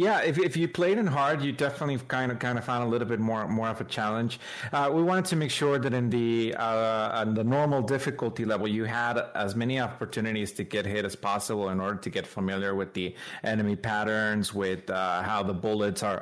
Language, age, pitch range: English, 30-49, 105-130 Hz